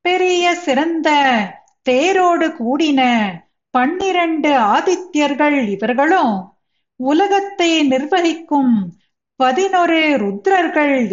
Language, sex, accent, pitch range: Tamil, female, native, 235-340 Hz